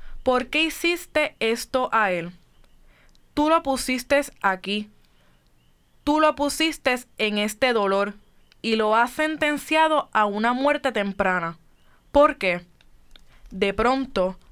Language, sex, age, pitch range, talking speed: Spanish, female, 20-39, 195-260 Hz, 115 wpm